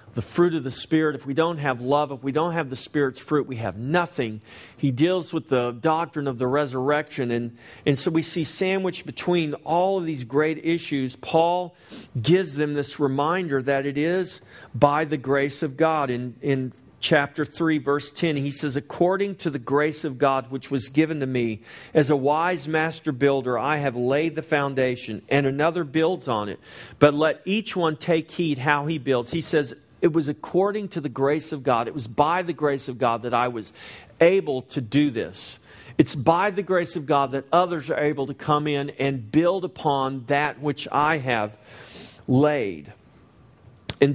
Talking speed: 195 wpm